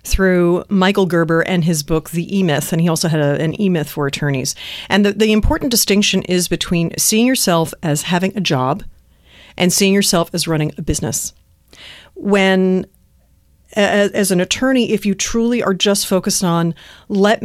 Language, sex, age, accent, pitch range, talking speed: English, female, 40-59, American, 160-220 Hz, 170 wpm